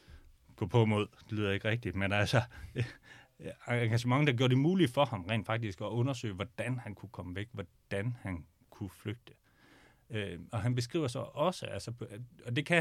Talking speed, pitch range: 185 wpm, 95-120 Hz